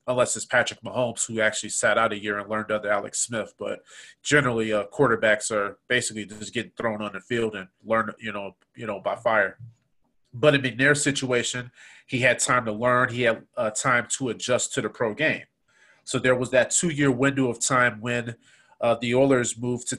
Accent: American